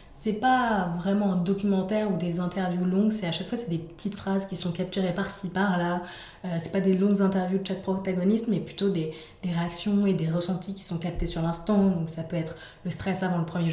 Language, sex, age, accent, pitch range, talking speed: French, female, 20-39, French, 165-195 Hz, 240 wpm